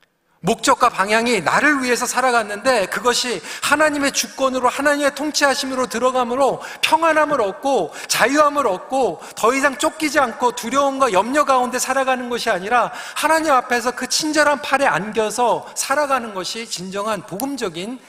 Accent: native